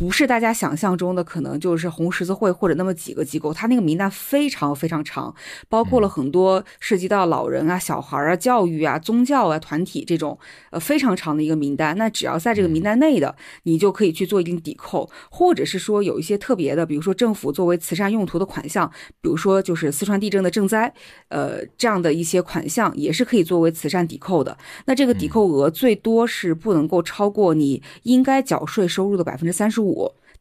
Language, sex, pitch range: Chinese, female, 165-225 Hz